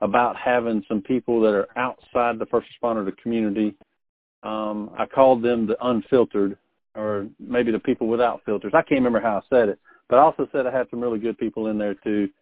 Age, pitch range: 50-69, 105-120 Hz